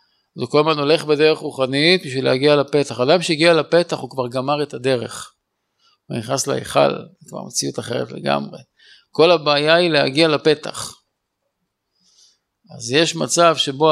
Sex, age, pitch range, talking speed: male, 50-69, 135-175 Hz, 150 wpm